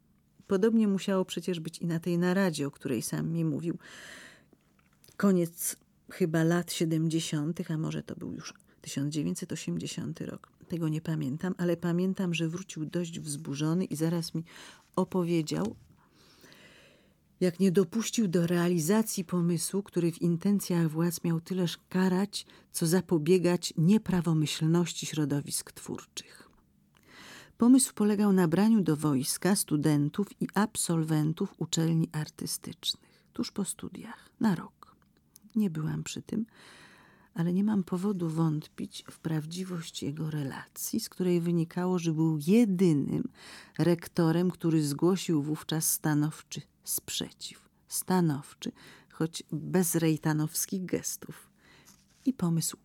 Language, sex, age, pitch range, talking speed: Polish, female, 40-59, 160-185 Hz, 115 wpm